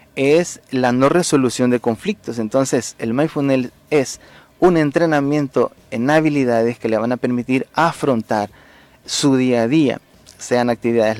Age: 30-49